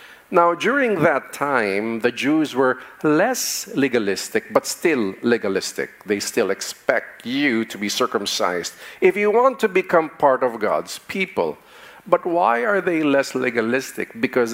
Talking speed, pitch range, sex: 145 wpm, 115-175 Hz, male